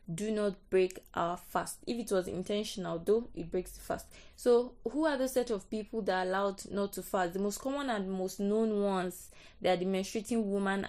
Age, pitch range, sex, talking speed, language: 20-39, 180-215 Hz, female, 215 wpm, English